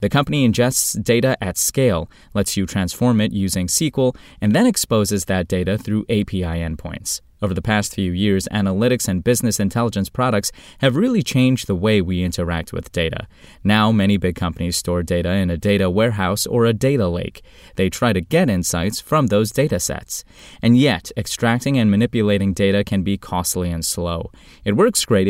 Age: 20-39